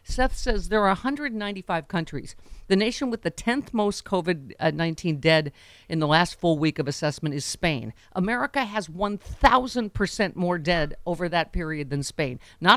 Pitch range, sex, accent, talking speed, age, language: 145-185 Hz, female, American, 160 wpm, 50-69, English